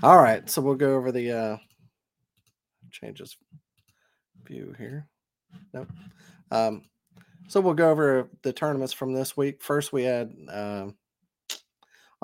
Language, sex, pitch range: English, male, 115-140 Hz